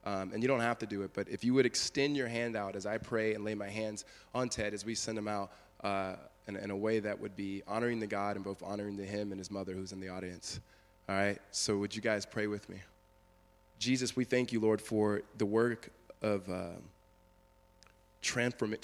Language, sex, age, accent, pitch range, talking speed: English, male, 20-39, American, 95-115 Hz, 225 wpm